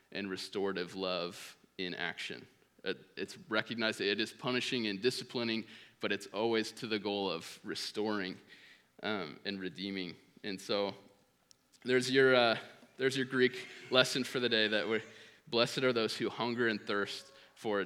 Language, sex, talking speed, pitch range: English, male, 155 wpm, 100-130 Hz